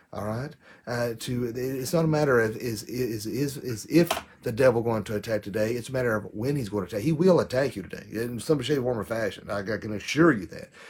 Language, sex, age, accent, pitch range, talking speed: English, male, 40-59, American, 105-130 Hz, 240 wpm